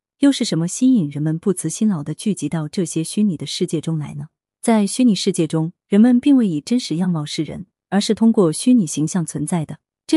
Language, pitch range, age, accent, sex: Chinese, 160-215 Hz, 30-49, native, female